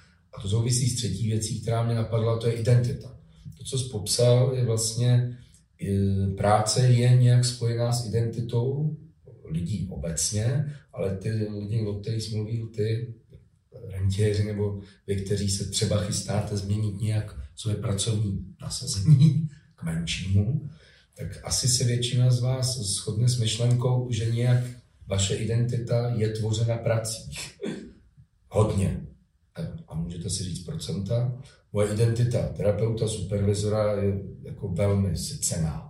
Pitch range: 105-130 Hz